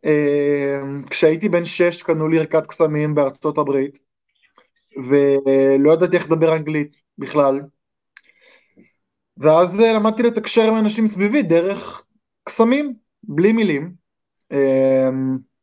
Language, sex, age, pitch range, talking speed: Hebrew, male, 20-39, 145-185 Hz, 105 wpm